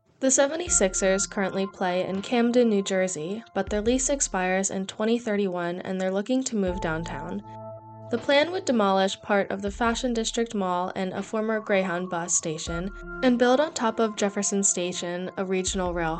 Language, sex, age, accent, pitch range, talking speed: English, female, 10-29, American, 185-225 Hz, 170 wpm